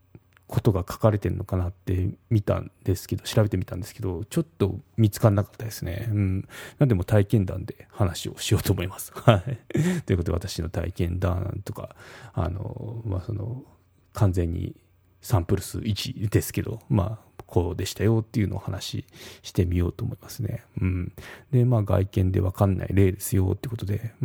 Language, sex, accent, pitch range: Japanese, male, native, 95-120 Hz